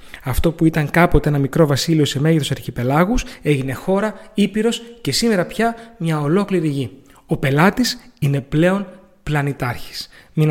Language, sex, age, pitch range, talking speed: Greek, male, 30-49, 140-190 Hz, 145 wpm